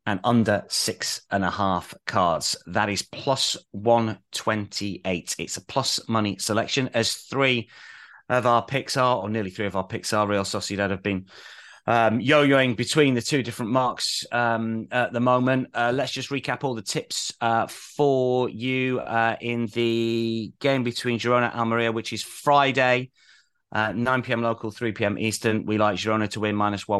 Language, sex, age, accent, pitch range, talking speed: English, male, 30-49, British, 100-120 Hz, 170 wpm